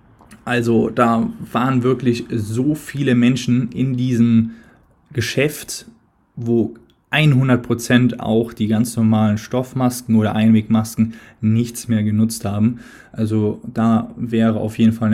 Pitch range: 110-120 Hz